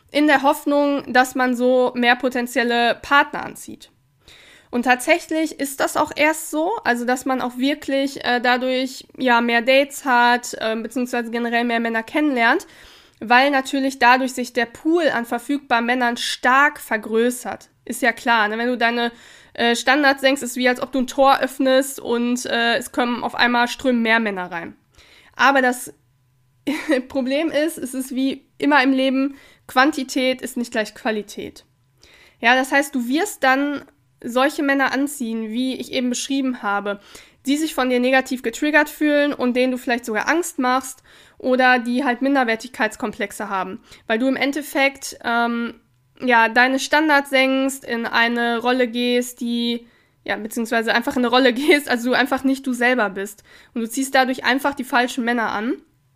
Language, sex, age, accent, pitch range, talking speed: German, female, 20-39, German, 235-275 Hz, 170 wpm